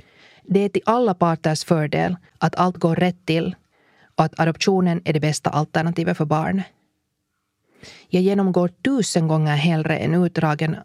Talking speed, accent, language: 150 wpm, Finnish, Swedish